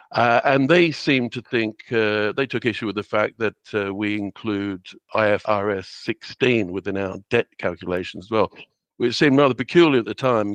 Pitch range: 100-115 Hz